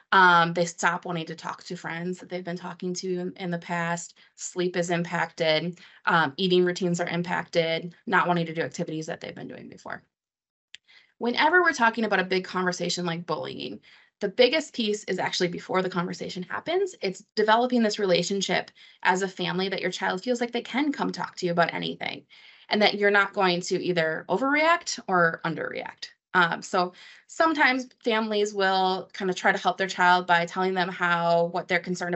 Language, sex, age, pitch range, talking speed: English, female, 20-39, 170-215 Hz, 190 wpm